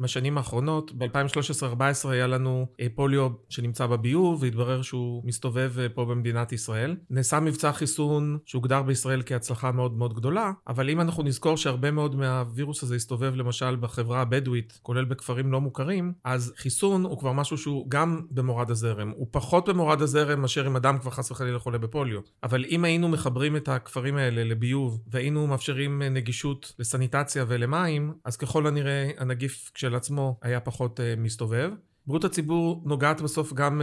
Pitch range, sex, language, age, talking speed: 125-150 Hz, male, Hebrew, 40-59, 150 wpm